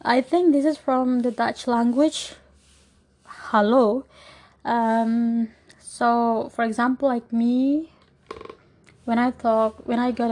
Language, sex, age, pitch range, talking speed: English, female, 20-39, 220-260 Hz, 120 wpm